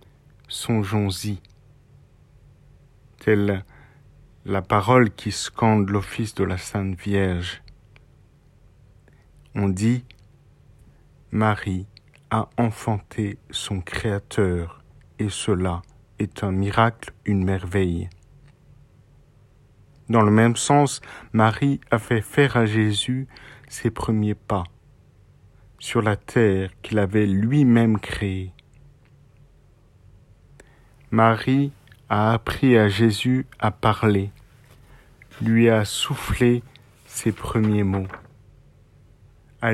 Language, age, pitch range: French, 50-69, 100-130 Hz